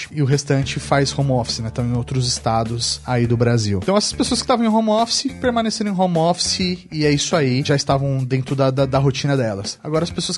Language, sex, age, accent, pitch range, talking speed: Portuguese, male, 30-49, Brazilian, 130-160 Hz, 235 wpm